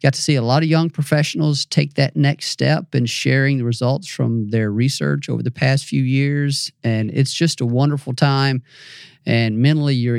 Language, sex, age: English, male, 40-59